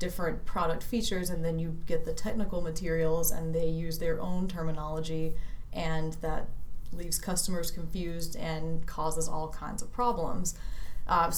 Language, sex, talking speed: English, female, 150 wpm